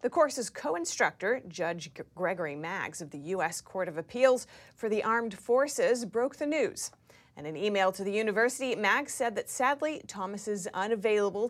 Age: 30-49